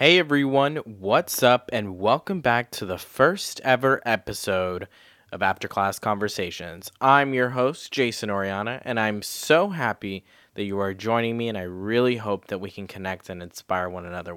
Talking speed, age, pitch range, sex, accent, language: 175 wpm, 20-39, 95-125 Hz, male, American, English